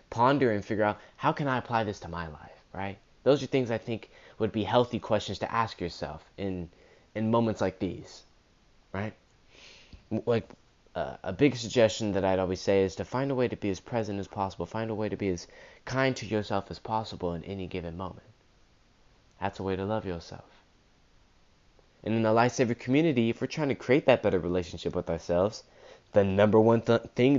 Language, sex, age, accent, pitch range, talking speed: English, male, 20-39, American, 95-120 Hz, 200 wpm